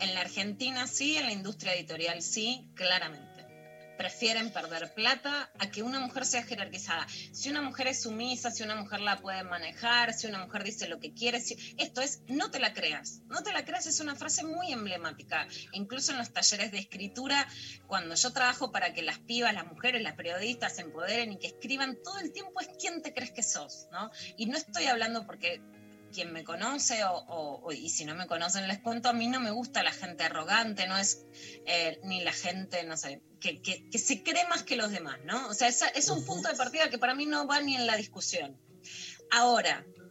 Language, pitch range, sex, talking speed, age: Spanish, 190-265 Hz, female, 220 wpm, 20-39